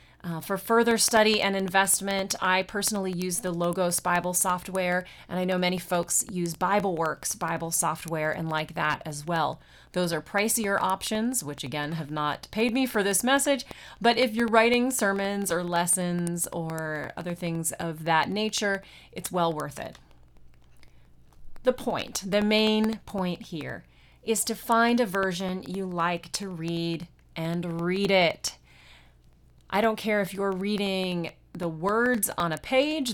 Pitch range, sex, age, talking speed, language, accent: 165-210 Hz, female, 30-49, 155 wpm, English, American